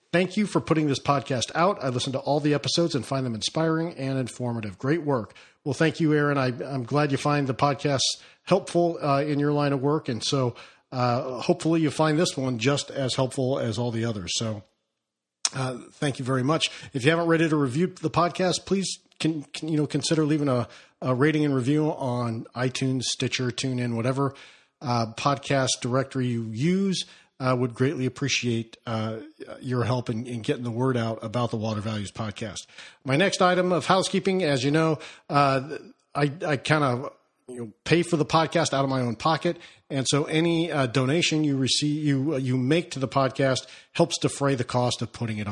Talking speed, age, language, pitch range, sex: 205 wpm, 50-69, English, 125-155 Hz, male